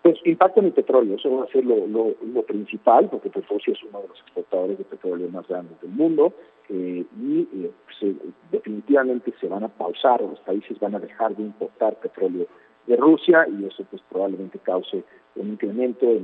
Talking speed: 200 wpm